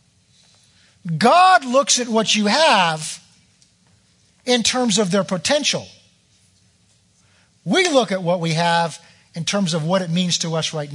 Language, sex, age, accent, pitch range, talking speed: English, male, 50-69, American, 145-215 Hz, 145 wpm